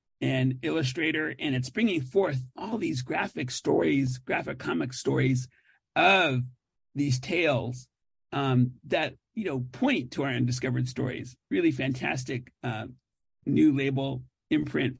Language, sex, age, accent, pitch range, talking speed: English, male, 50-69, American, 125-145 Hz, 125 wpm